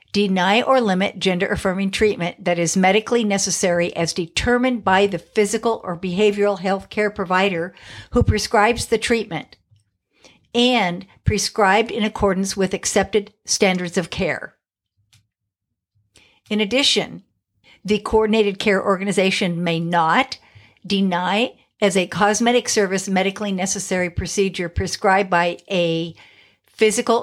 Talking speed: 115 wpm